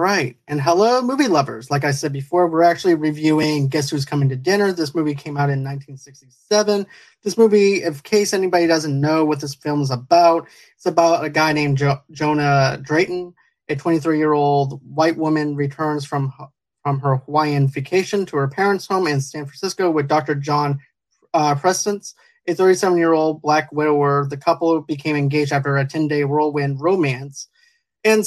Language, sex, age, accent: English, male, 30-49, American